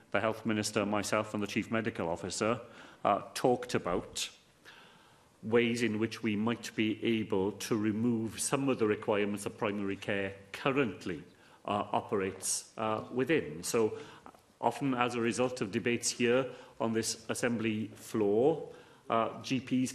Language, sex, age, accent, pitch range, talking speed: English, male, 40-59, British, 110-130 Hz, 140 wpm